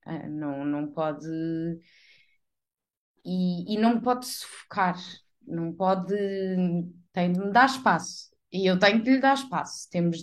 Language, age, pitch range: Portuguese, 20-39, 200-305 Hz